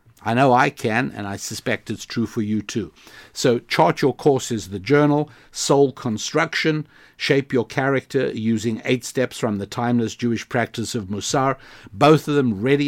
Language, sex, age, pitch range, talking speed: English, male, 60-79, 110-130 Hz, 175 wpm